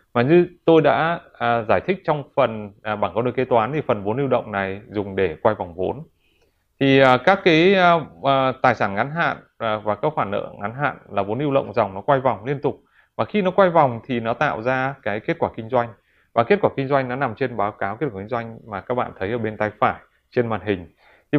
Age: 20-39